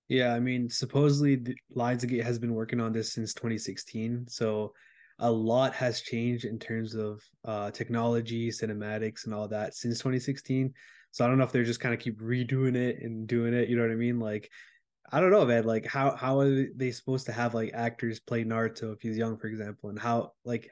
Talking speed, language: 215 wpm, English